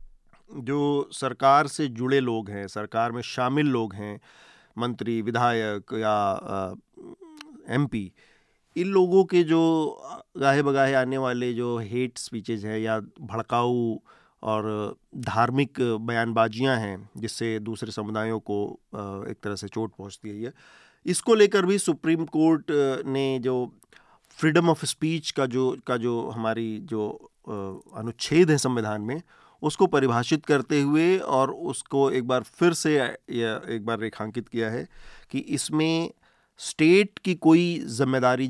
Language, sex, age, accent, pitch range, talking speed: Hindi, male, 40-59, native, 115-140 Hz, 130 wpm